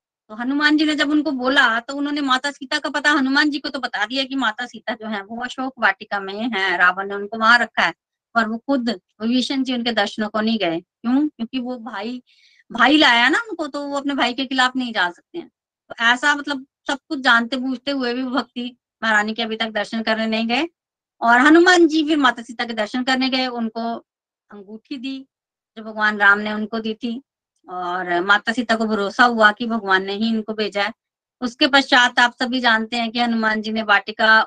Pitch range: 215-265 Hz